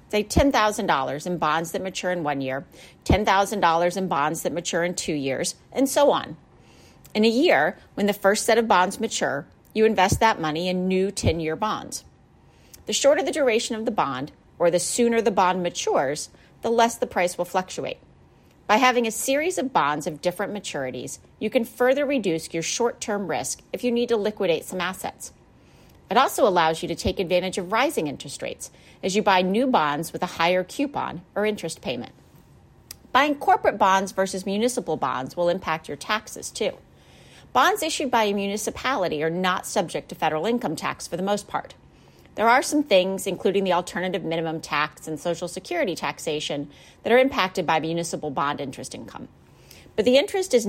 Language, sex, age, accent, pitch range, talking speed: English, female, 40-59, American, 170-230 Hz, 185 wpm